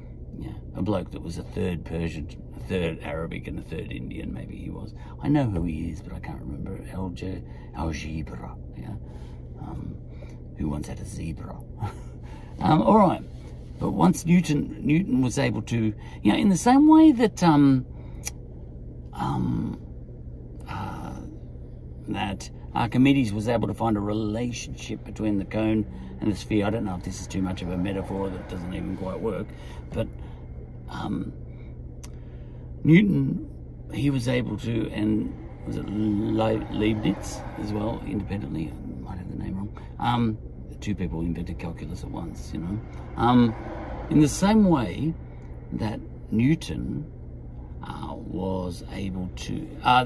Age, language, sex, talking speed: 60-79, English, male, 150 wpm